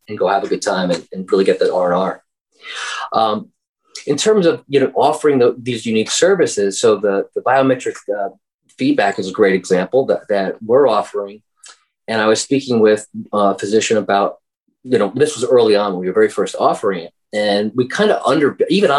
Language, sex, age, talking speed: English, male, 30-49, 200 wpm